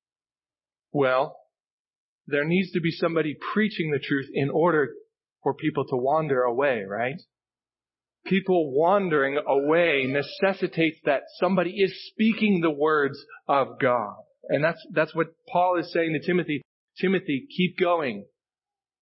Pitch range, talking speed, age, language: 145-185 Hz, 130 wpm, 40-59, English